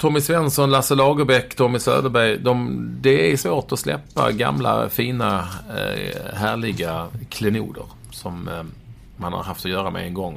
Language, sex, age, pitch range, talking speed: English, male, 40-59, 100-125 Hz, 155 wpm